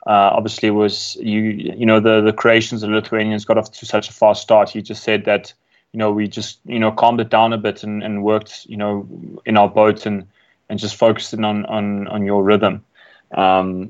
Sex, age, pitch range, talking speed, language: male, 20-39, 105-115 Hz, 225 wpm, English